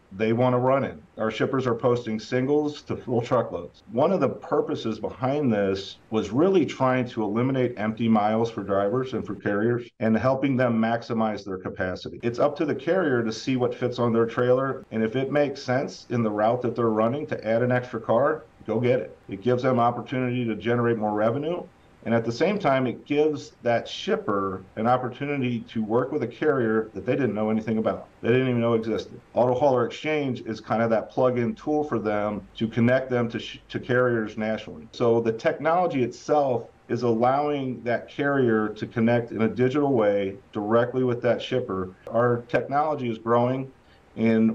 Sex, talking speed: male, 195 wpm